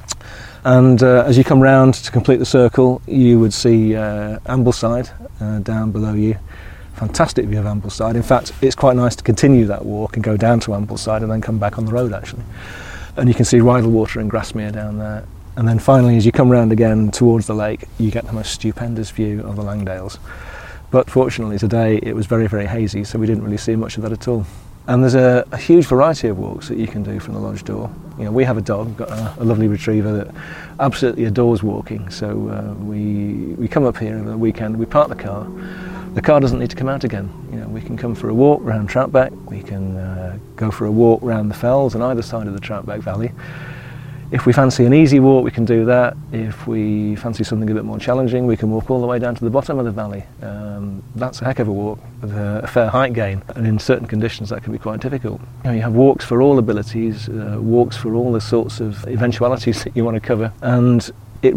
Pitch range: 105-125 Hz